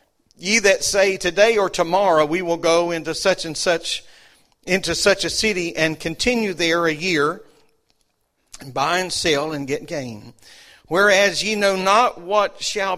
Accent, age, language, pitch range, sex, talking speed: American, 50-69, English, 160-200 Hz, male, 160 wpm